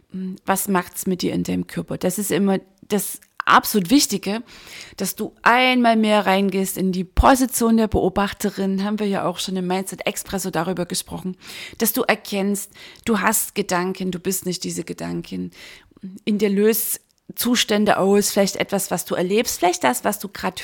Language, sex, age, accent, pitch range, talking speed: German, female, 30-49, German, 180-210 Hz, 170 wpm